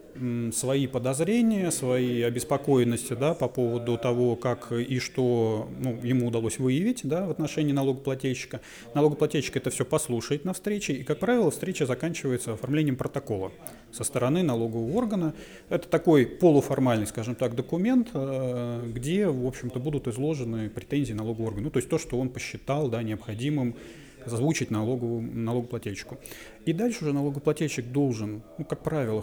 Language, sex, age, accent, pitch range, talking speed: Russian, male, 30-49, native, 120-150 Hz, 140 wpm